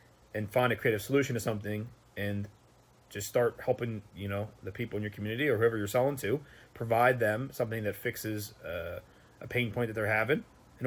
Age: 30-49